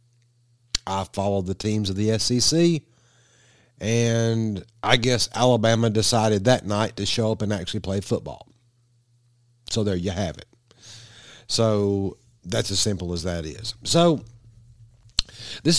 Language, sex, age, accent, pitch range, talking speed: English, male, 50-69, American, 105-125 Hz, 135 wpm